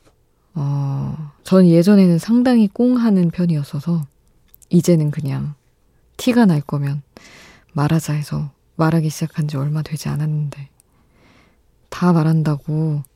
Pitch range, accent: 150-180 Hz, native